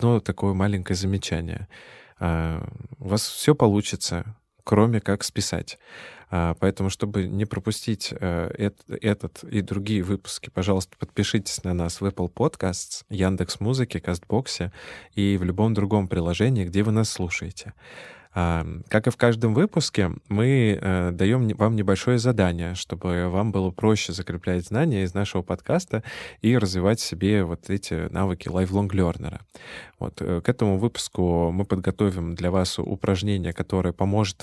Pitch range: 90-110 Hz